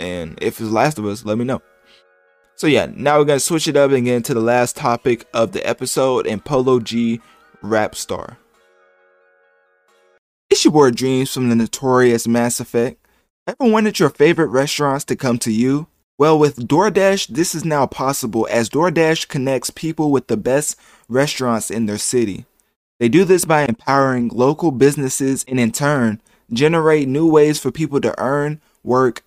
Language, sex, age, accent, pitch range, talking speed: English, male, 20-39, American, 115-150 Hz, 180 wpm